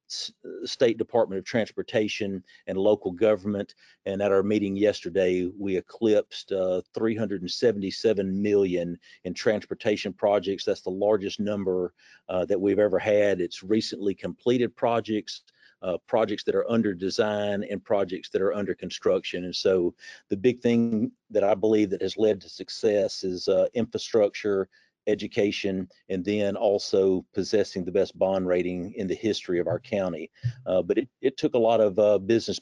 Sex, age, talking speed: male, 50-69, 160 wpm